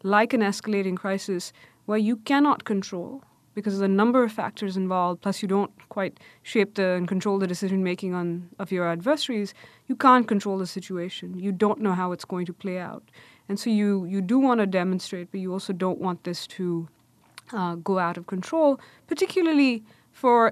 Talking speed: 185 wpm